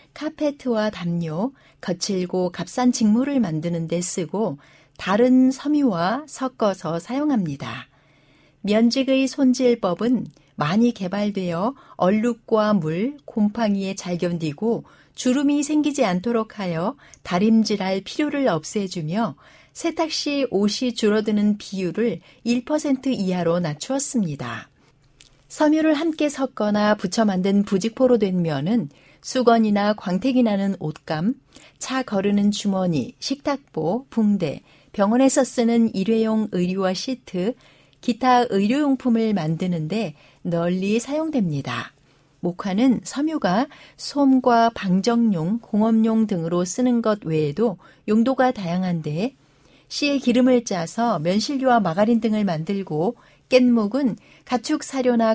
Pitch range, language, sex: 180-250 Hz, Korean, female